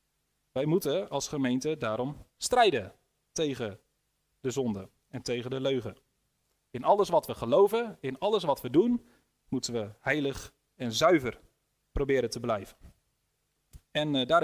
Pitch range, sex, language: 130-175 Hz, male, Dutch